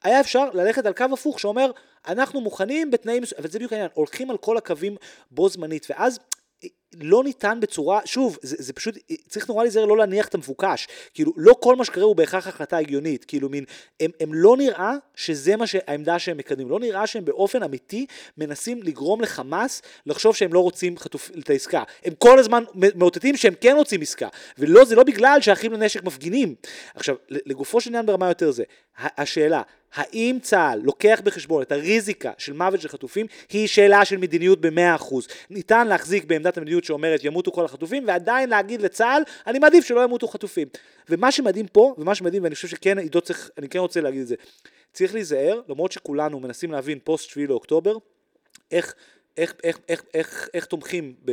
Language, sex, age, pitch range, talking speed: Hebrew, male, 30-49, 165-250 Hz, 160 wpm